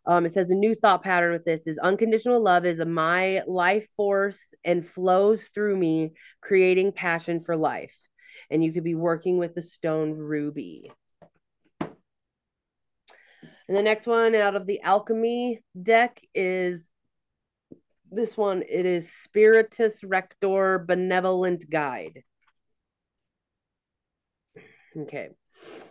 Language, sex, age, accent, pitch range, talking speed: English, female, 30-49, American, 170-215 Hz, 125 wpm